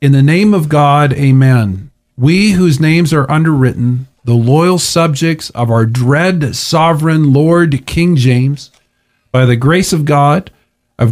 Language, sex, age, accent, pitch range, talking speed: English, male, 40-59, American, 135-170 Hz, 145 wpm